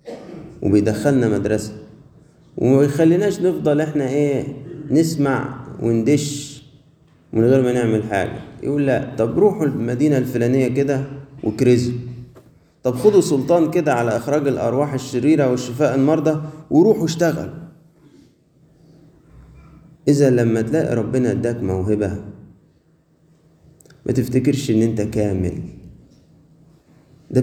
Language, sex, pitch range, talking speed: Arabic, male, 100-140 Hz, 100 wpm